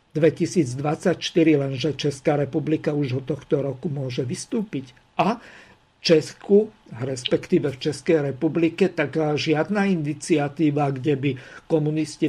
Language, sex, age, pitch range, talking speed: Slovak, male, 50-69, 145-170 Hz, 110 wpm